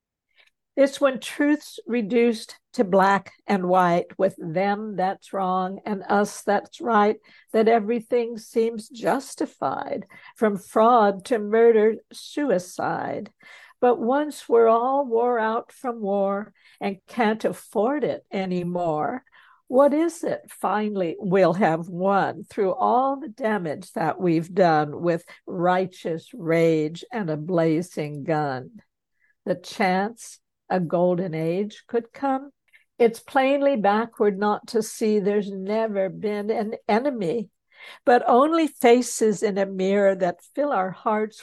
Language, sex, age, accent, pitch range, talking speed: English, female, 60-79, American, 185-240 Hz, 125 wpm